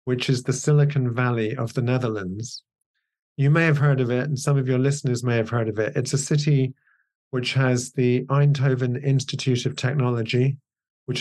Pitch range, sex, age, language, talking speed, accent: 120-140 Hz, male, 40-59, English, 185 wpm, British